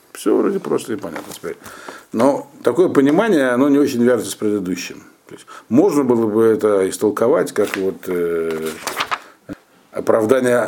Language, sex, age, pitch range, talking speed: Russian, male, 60-79, 105-135 Hz, 145 wpm